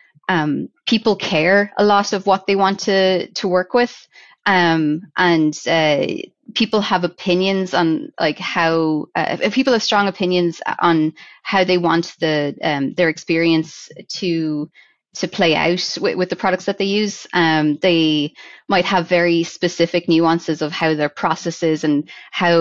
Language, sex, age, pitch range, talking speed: English, female, 20-39, 160-200 Hz, 155 wpm